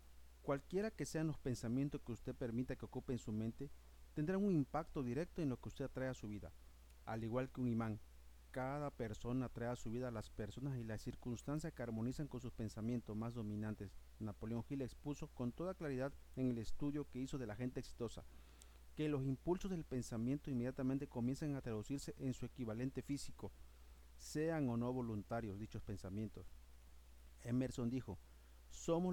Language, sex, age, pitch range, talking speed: Spanish, male, 40-59, 110-140 Hz, 175 wpm